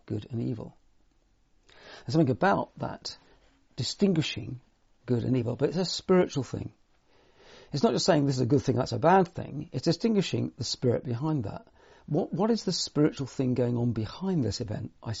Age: 50-69